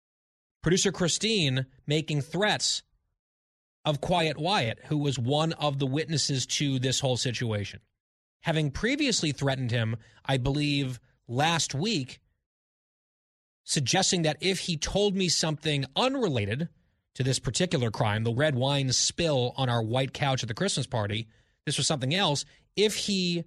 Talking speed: 140 wpm